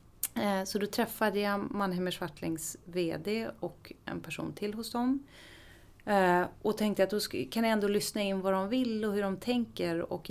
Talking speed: 175 wpm